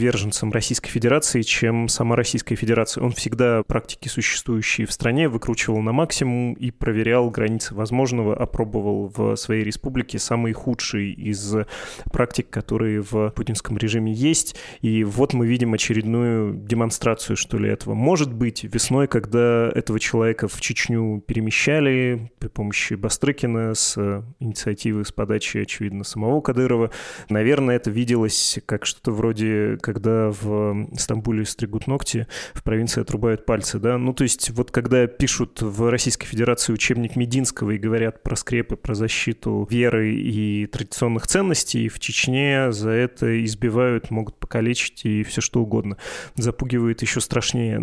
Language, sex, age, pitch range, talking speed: Russian, male, 20-39, 110-125 Hz, 140 wpm